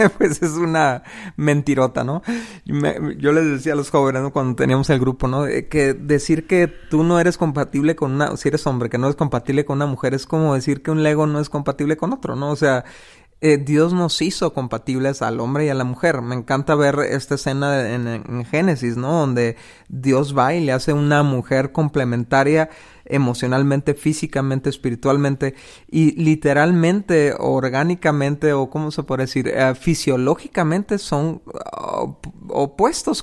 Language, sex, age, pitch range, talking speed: Spanish, male, 30-49, 130-155 Hz, 170 wpm